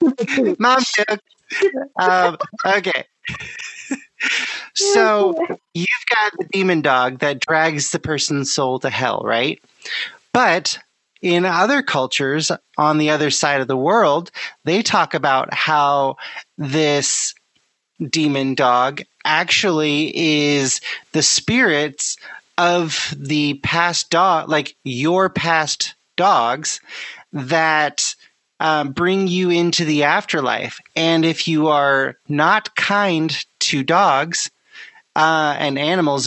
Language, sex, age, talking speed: English, male, 30-49, 105 wpm